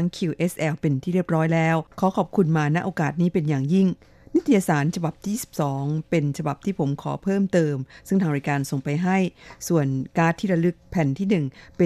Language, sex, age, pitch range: Thai, female, 50-69, 145-180 Hz